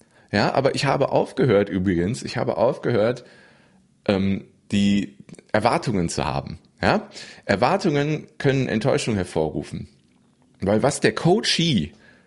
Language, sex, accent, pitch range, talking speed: German, male, German, 85-110 Hz, 110 wpm